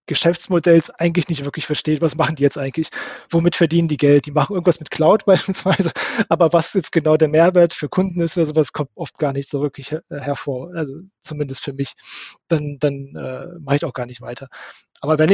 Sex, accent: male, German